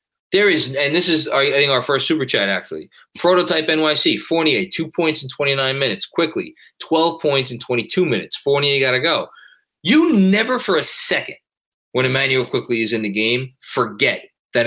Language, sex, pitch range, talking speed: English, male, 120-165 Hz, 185 wpm